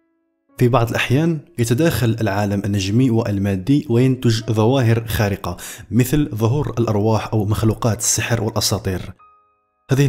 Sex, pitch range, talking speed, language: male, 105-120 Hz, 105 wpm, Arabic